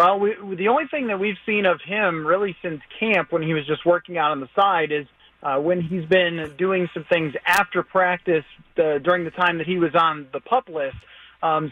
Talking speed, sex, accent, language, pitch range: 220 wpm, male, American, English, 170-210 Hz